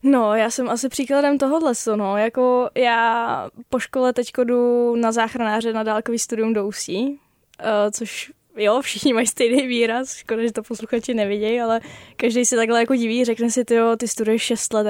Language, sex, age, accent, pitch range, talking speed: Czech, female, 10-29, native, 220-240 Hz, 175 wpm